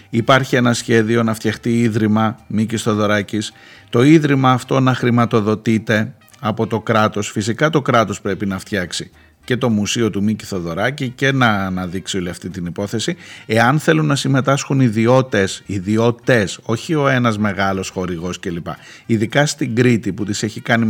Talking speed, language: 155 wpm, Greek